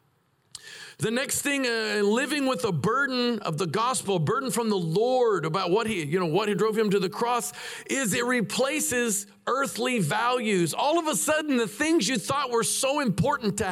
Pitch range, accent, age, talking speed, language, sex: 185-245 Hz, American, 50-69, 195 wpm, English, male